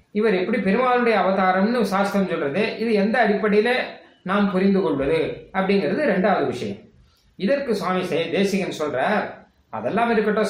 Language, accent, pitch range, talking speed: Tamil, native, 185-225 Hz, 115 wpm